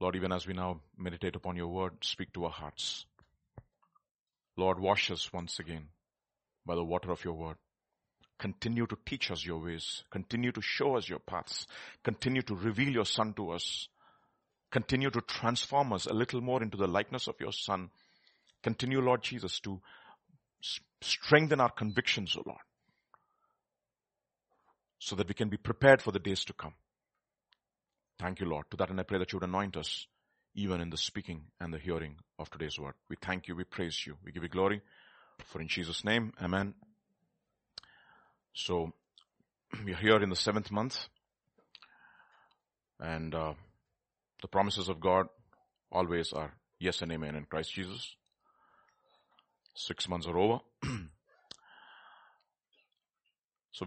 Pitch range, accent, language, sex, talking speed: 85-115 Hz, Indian, English, male, 155 wpm